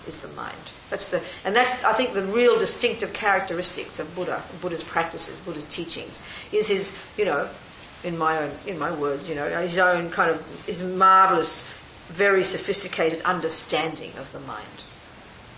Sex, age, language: female, 50-69, English